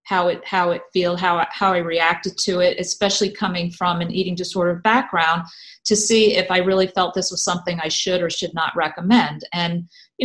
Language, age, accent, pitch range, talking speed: English, 40-59, American, 170-210 Hz, 205 wpm